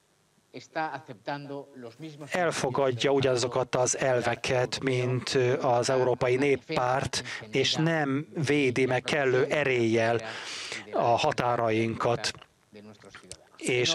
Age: 30-49